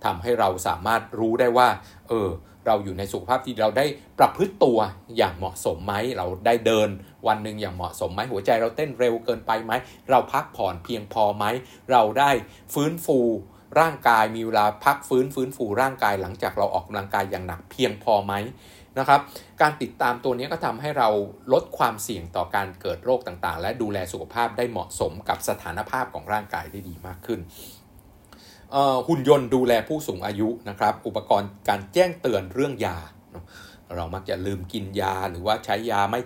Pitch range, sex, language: 95-125 Hz, male, Thai